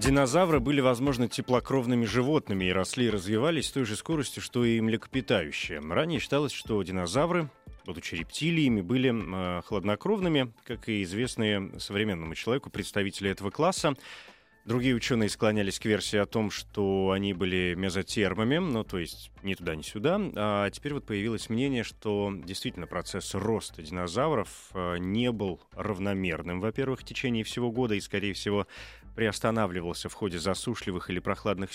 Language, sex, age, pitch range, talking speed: Russian, male, 30-49, 95-125 Hz, 150 wpm